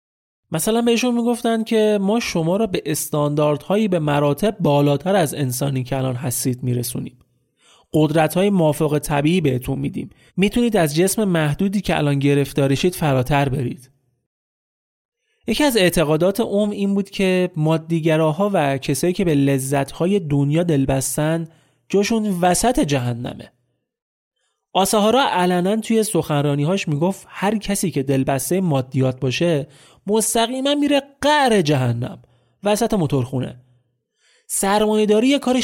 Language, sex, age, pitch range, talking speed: Persian, male, 30-49, 140-205 Hz, 120 wpm